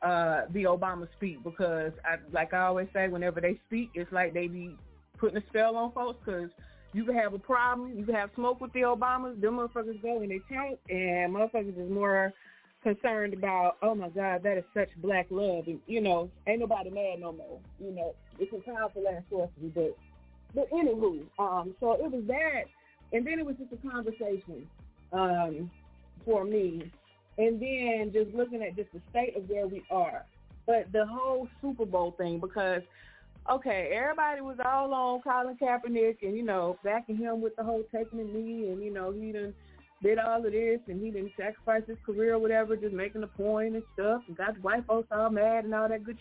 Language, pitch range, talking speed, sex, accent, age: English, 180-230 Hz, 205 wpm, female, American, 30-49